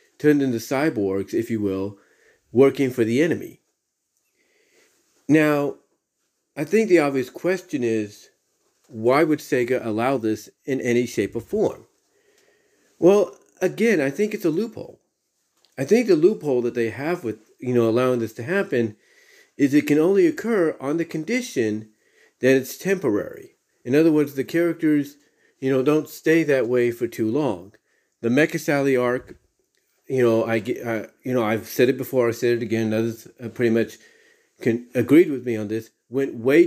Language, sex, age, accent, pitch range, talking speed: English, male, 40-59, American, 115-165 Hz, 165 wpm